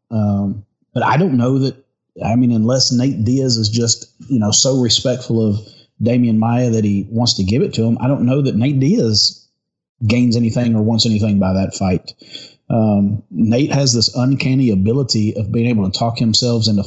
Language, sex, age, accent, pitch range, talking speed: English, male, 30-49, American, 110-130 Hz, 195 wpm